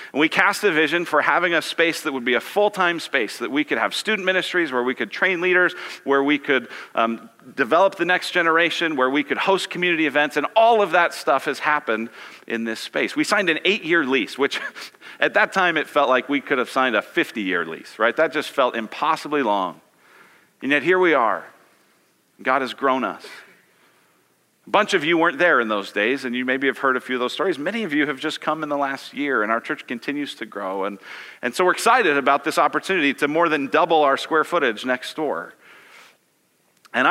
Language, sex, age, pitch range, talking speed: English, male, 40-59, 125-175 Hz, 220 wpm